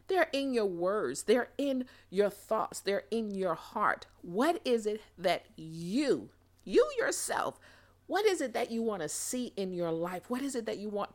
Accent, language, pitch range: American, English, 175-240 Hz